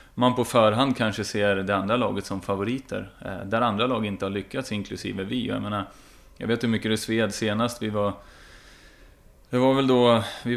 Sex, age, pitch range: male, 30-49, 100-120 Hz